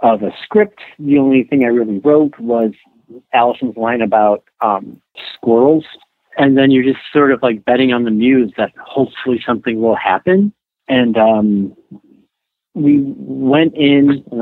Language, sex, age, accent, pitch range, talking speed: English, male, 50-69, American, 110-135 Hz, 155 wpm